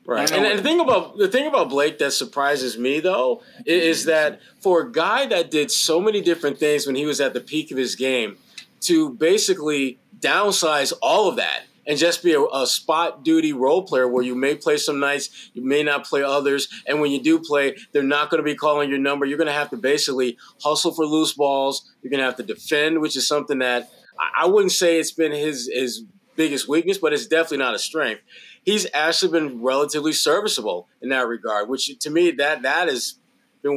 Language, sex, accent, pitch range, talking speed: English, male, American, 140-185 Hz, 220 wpm